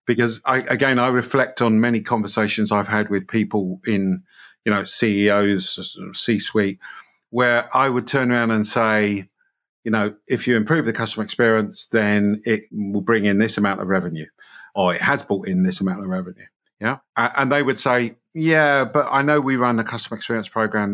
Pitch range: 105-125 Hz